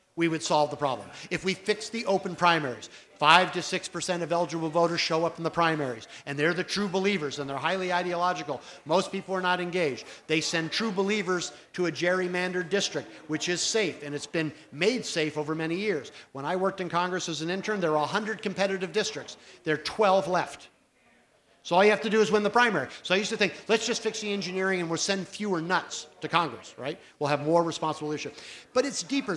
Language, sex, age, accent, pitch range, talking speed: English, male, 50-69, American, 155-200 Hz, 225 wpm